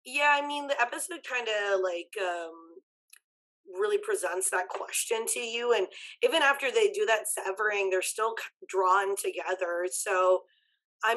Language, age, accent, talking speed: English, 20-39, American, 150 wpm